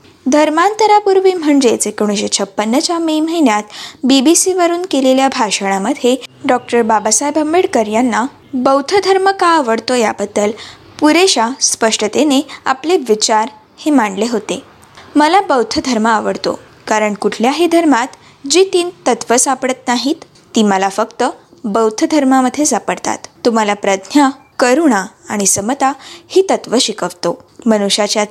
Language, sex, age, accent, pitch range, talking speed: Marathi, female, 20-39, native, 220-325 Hz, 115 wpm